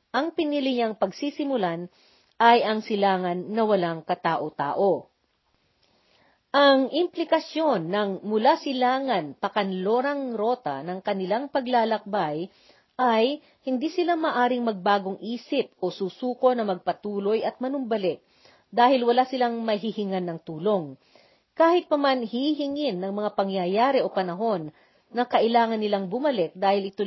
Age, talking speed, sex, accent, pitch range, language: 40-59, 115 wpm, female, native, 190-260 Hz, Filipino